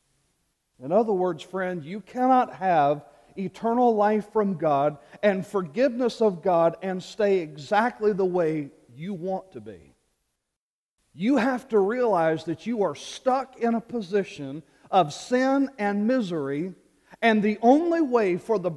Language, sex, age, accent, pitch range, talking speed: English, male, 40-59, American, 160-220 Hz, 145 wpm